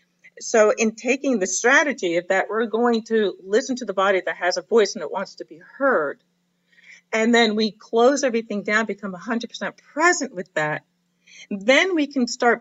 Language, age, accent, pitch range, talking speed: English, 40-59, American, 180-230 Hz, 185 wpm